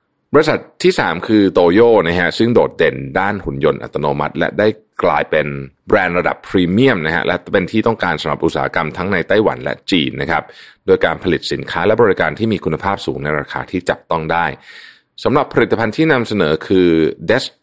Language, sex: Thai, male